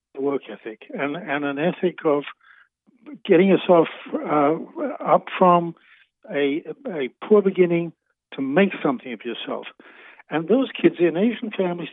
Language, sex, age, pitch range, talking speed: English, male, 60-79, 145-230 Hz, 135 wpm